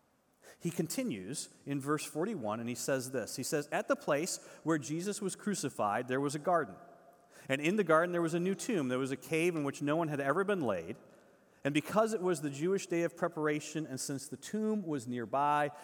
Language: English